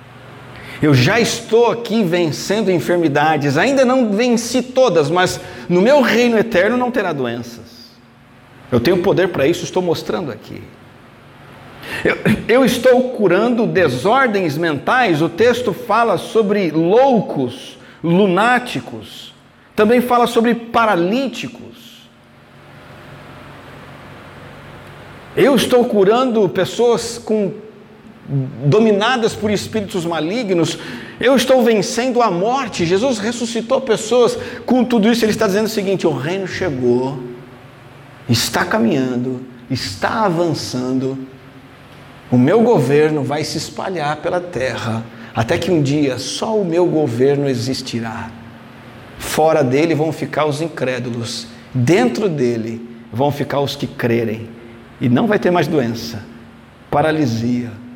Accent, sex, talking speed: Brazilian, male, 115 wpm